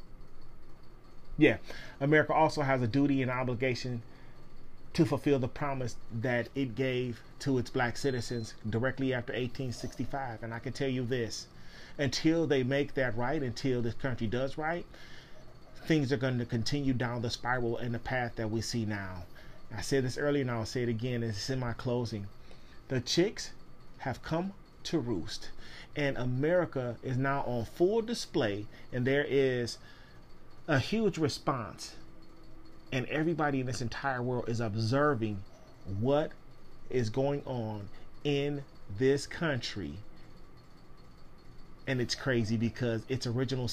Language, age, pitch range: English, 30-49, 115-135 Hz